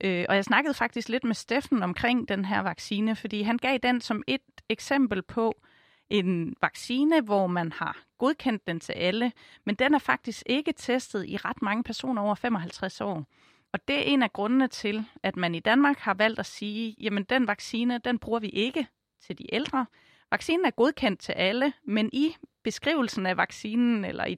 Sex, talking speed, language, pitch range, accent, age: female, 190 wpm, Danish, 195-245 Hz, native, 30-49